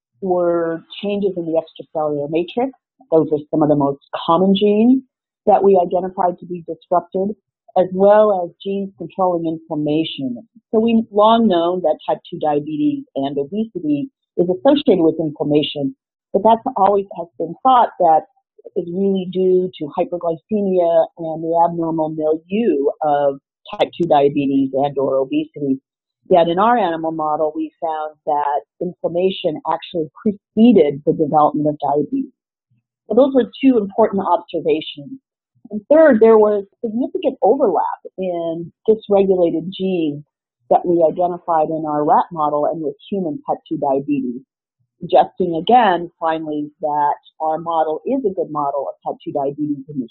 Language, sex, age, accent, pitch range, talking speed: English, female, 50-69, American, 155-205 Hz, 145 wpm